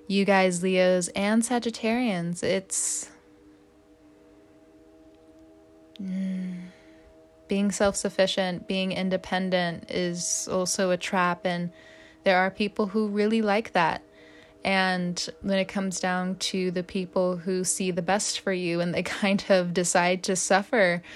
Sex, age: female, 20-39